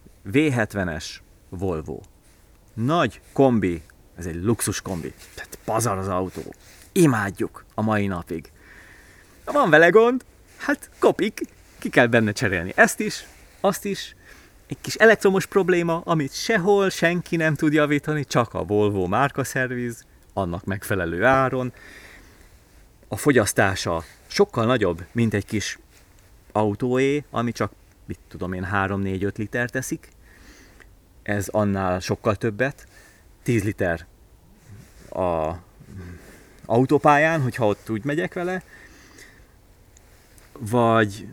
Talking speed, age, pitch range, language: 110 wpm, 30-49, 95-125 Hz, Hungarian